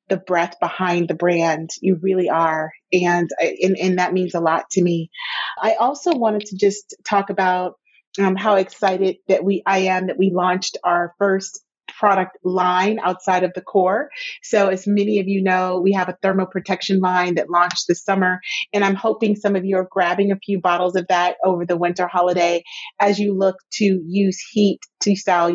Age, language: 30-49, English